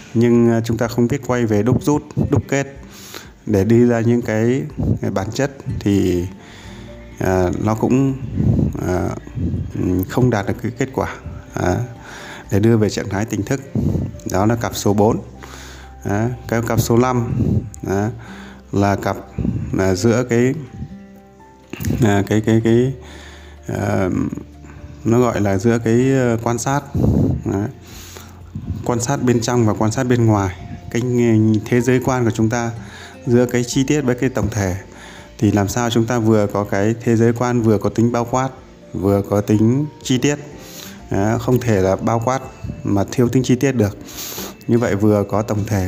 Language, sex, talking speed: Vietnamese, male, 160 wpm